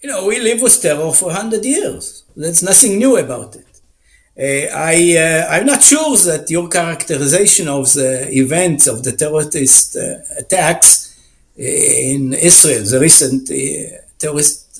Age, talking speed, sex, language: 60-79, 145 wpm, male, English